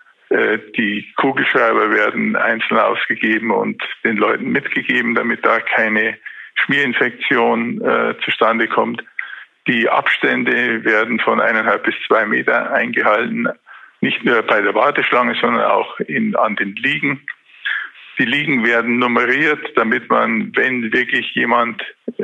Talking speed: 120 wpm